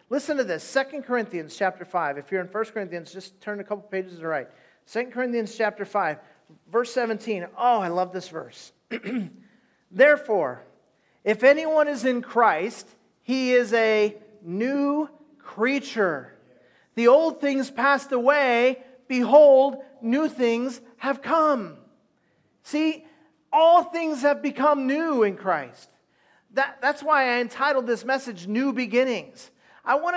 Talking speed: 140 wpm